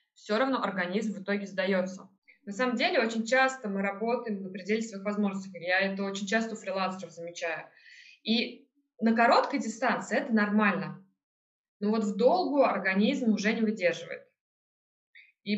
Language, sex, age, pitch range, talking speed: Russian, female, 20-39, 195-245 Hz, 150 wpm